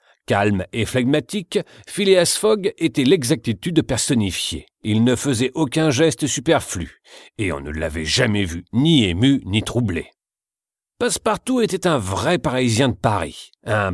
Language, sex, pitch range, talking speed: Slovak, male, 95-135 Hz, 140 wpm